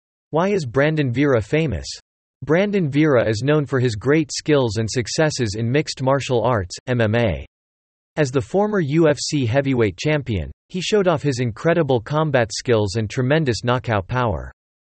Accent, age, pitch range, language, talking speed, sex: American, 40-59, 115-150 Hz, English, 150 wpm, male